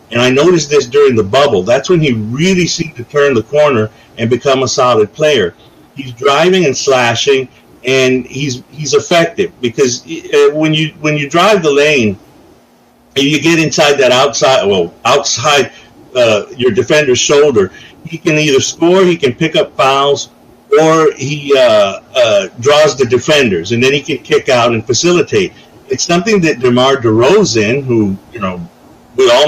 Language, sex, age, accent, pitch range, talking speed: English, male, 50-69, American, 130-180 Hz, 170 wpm